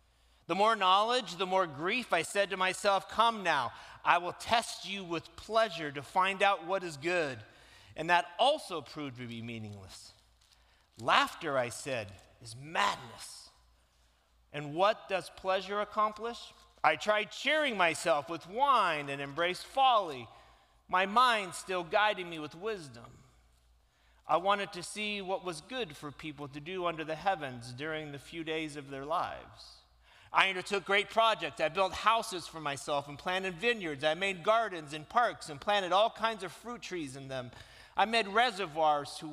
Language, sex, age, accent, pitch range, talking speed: English, male, 40-59, American, 135-190 Hz, 165 wpm